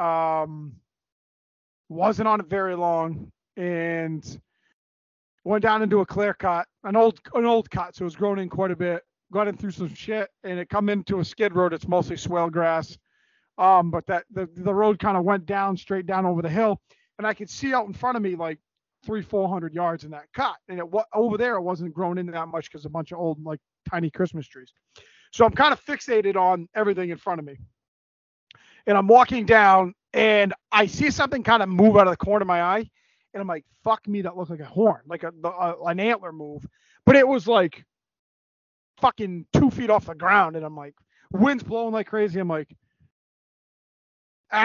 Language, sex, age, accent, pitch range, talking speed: English, male, 40-59, American, 170-220 Hz, 210 wpm